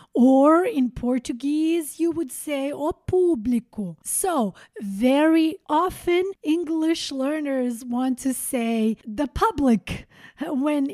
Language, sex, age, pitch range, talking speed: English, female, 30-49, 235-305 Hz, 105 wpm